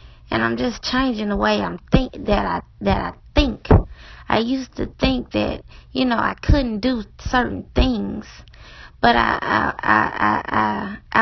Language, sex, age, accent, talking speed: English, female, 20-39, American, 155 wpm